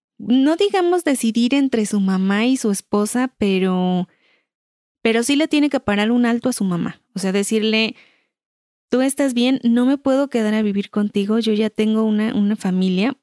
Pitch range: 200-245 Hz